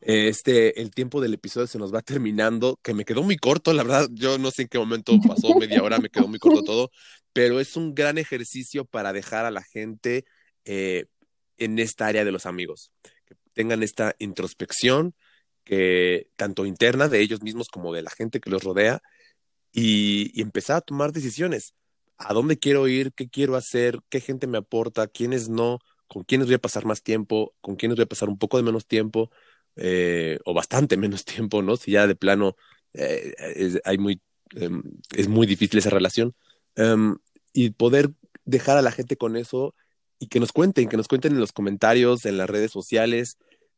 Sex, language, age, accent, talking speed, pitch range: male, Spanish, 30-49, Mexican, 190 wpm, 105-130 Hz